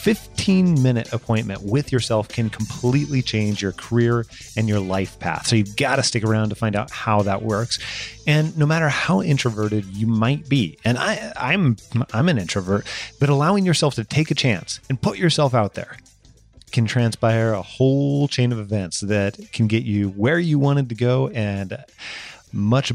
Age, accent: 30-49, American